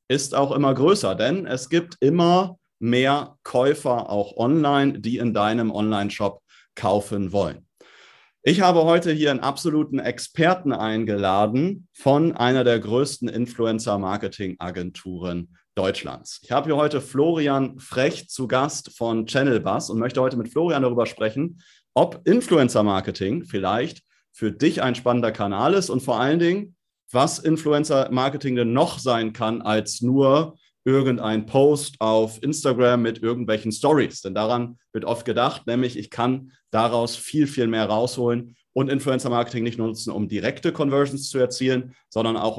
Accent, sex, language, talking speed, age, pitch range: German, male, German, 150 wpm, 30-49, 110-145 Hz